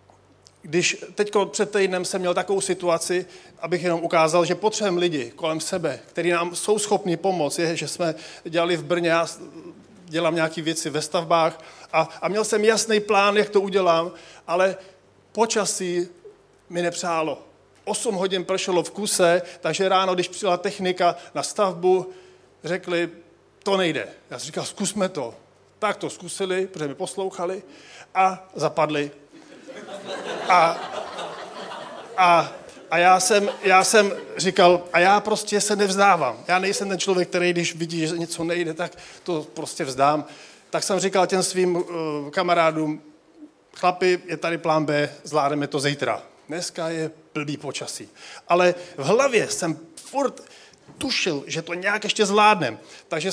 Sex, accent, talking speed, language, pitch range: male, native, 150 wpm, Czech, 165-190 Hz